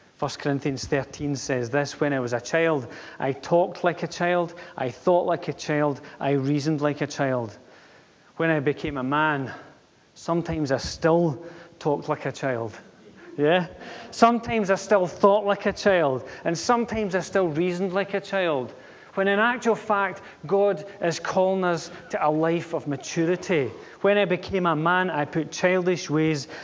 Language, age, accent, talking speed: English, 40-59, British, 170 wpm